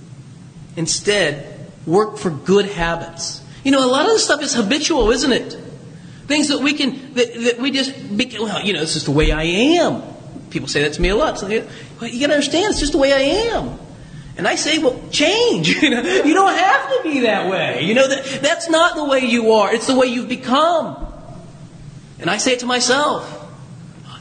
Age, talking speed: 30-49, 220 wpm